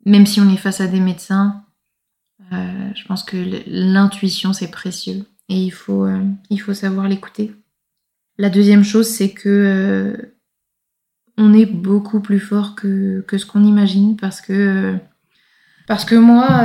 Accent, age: French, 20-39